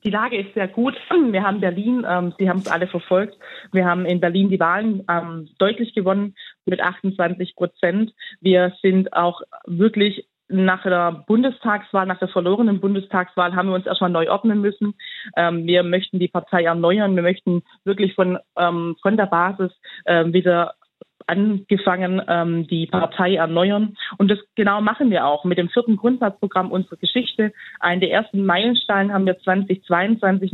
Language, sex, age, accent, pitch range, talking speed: German, female, 30-49, German, 180-215 Hz, 165 wpm